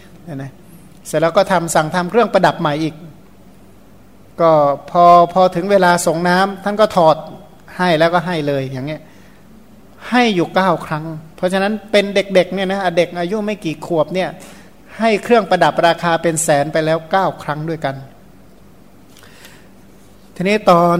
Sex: male